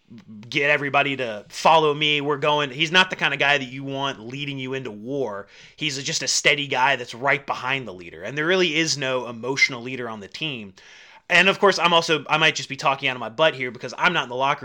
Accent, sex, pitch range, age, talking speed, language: American, male, 130-160 Hz, 30-49, 250 wpm, English